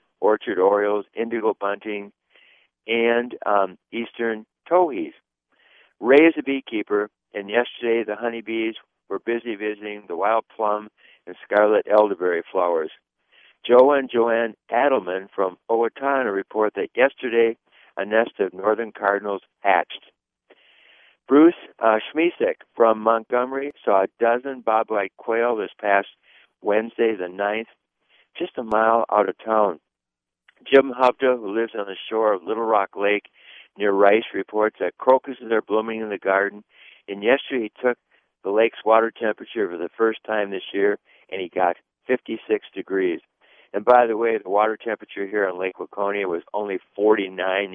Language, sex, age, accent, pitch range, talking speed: English, male, 60-79, American, 100-125 Hz, 145 wpm